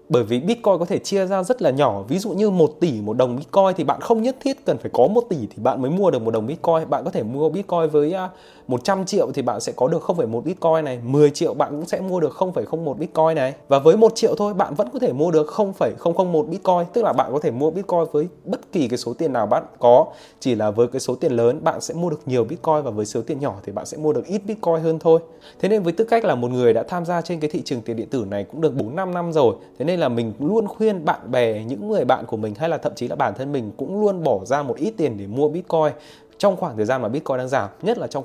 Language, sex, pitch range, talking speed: Vietnamese, male, 120-175 Hz, 290 wpm